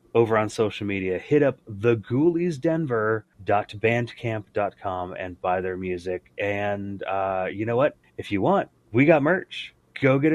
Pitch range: 95-115 Hz